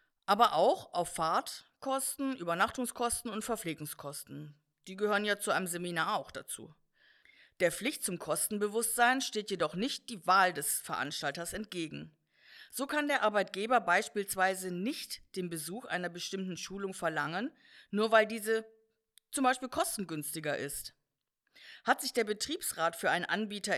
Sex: female